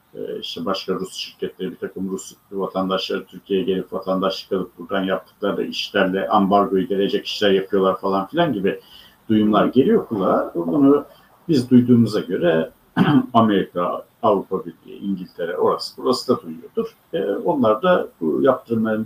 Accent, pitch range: native, 100-140 Hz